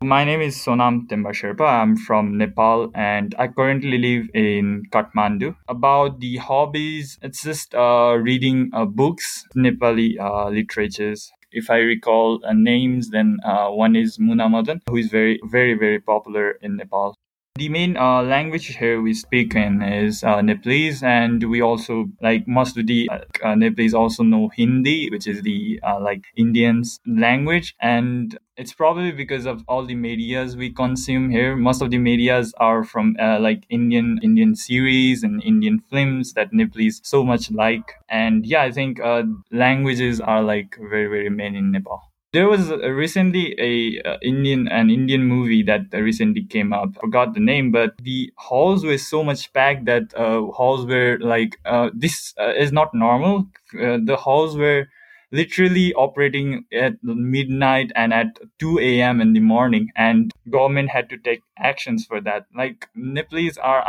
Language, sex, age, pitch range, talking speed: English, male, 20-39, 115-150 Hz, 170 wpm